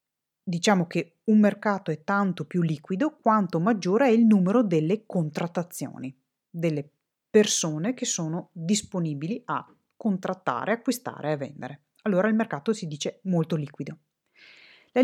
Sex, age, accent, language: female, 30-49, native, Italian